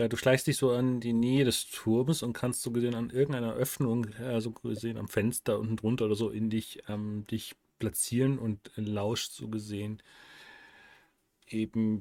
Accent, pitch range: German, 110-130 Hz